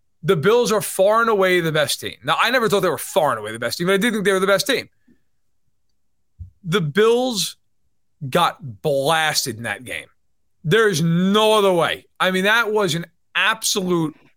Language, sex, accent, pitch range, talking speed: English, male, American, 140-200 Hz, 200 wpm